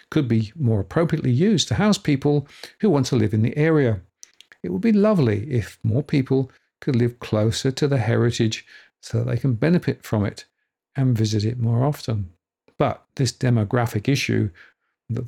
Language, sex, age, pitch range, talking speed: English, male, 50-69, 110-140 Hz, 175 wpm